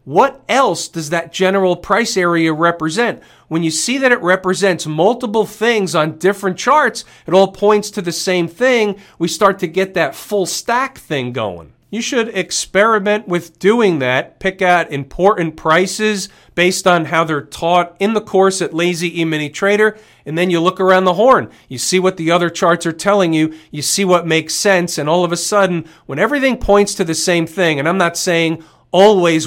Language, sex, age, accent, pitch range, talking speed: English, male, 40-59, American, 165-195 Hz, 195 wpm